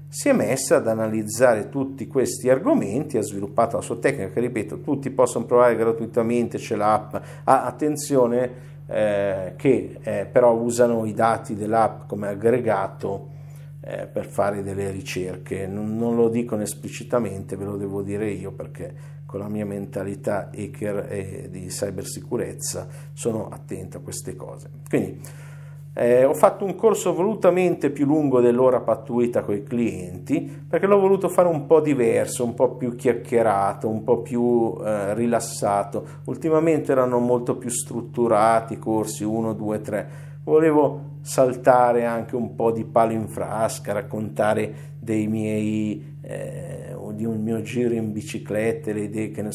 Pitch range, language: 110-145 Hz, Italian